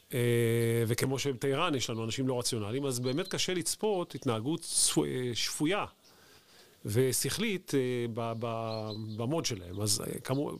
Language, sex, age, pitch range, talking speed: Hebrew, male, 40-59, 115-140 Hz, 100 wpm